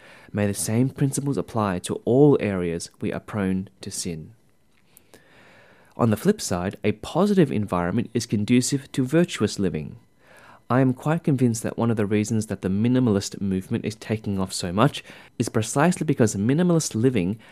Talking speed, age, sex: 165 wpm, 30-49, male